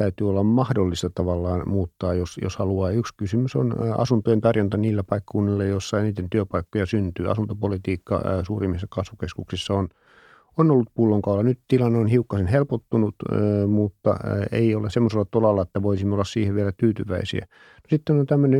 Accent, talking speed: native, 145 wpm